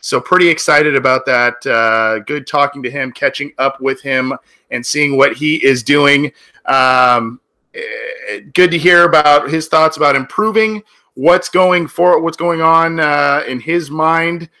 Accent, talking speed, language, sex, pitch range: American, 160 wpm, English, male, 125-165 Hz